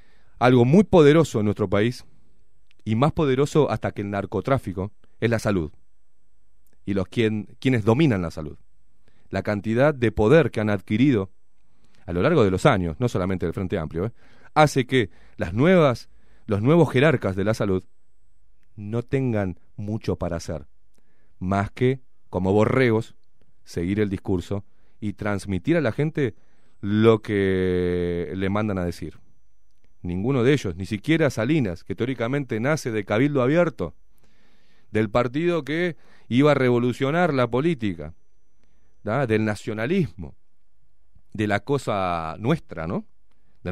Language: Spanish